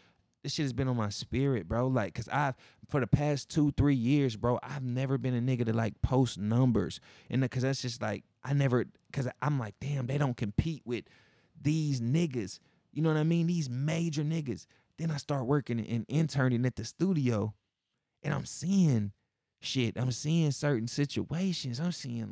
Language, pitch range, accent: English, 120-175 Hz, American